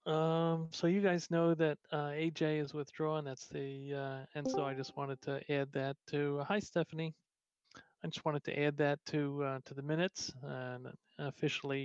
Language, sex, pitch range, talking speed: English, male, 135-150 Hz, 195 wpm